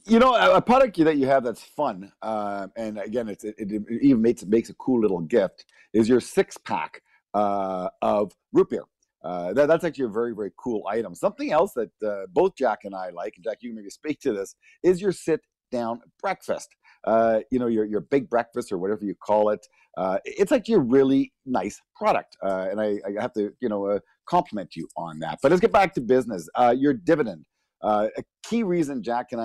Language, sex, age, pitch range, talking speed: English, male, 50-69, 100-135 Hz, 220 wpm